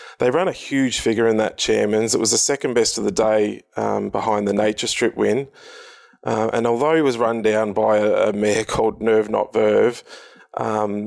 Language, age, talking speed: English, 20-39, 205 wpm